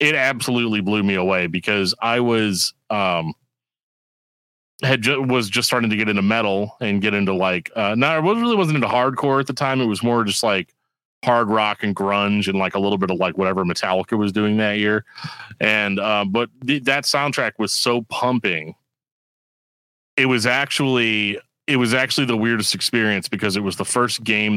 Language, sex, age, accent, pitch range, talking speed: English, male, 30-49, American, 95-120 Hz, 195 wpm